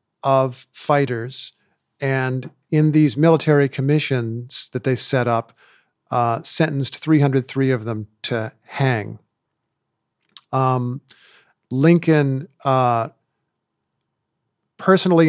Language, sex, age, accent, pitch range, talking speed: English, male, 50-69, American, 125-150 Hz, 85 wpm